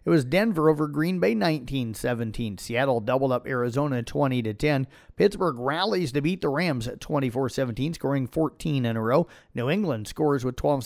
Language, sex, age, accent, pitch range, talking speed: English, male, 40-59, American, 120-150 Hz, 160 wpm